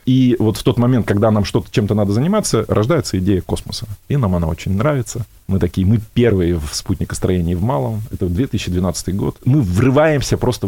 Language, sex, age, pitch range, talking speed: Russian, male, 30-49, 95-120 Hz, 190 wpm